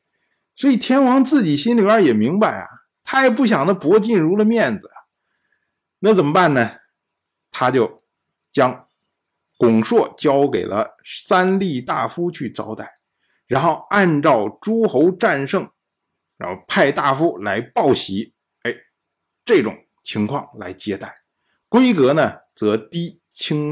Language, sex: Chinese, male